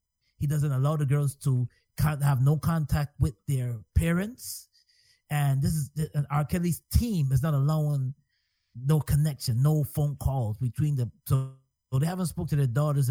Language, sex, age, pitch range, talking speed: English, male, 30-49, 115-150 Hz, 165 wpm